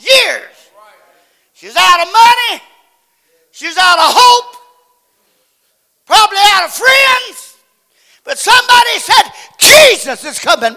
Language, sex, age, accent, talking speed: English, male, 50-69, American, 105 wpm